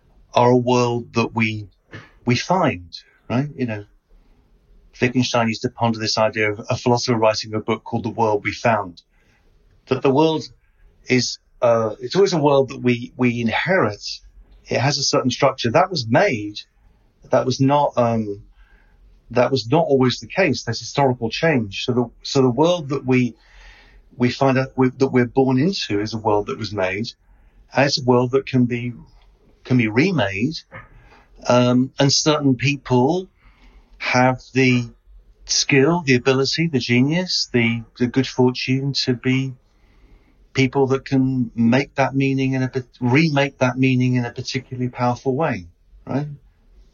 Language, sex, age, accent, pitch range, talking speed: English, male, 40-59, British, 115-135 Hz, 160 wpm